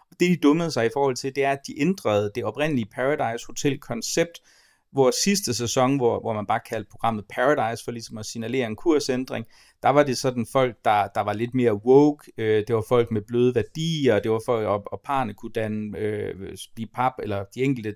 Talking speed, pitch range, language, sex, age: 200 wpm, 115-140 Hz, Danish, male, 30-49